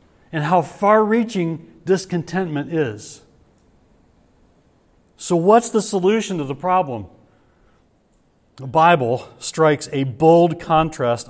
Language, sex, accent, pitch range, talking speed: English, male, American, 115-160 Hz, 95 wpm